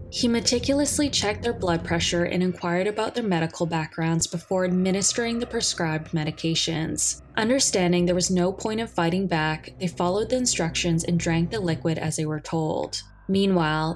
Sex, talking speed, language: female, 165 wpm, English